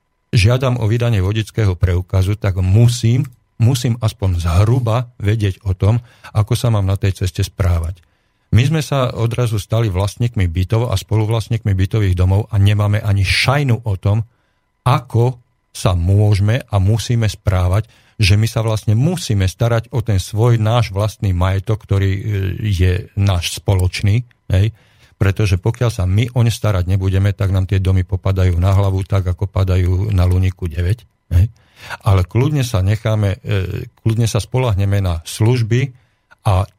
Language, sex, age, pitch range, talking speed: Slovak, male, 50-69, 95-115 Hz, 150 wpm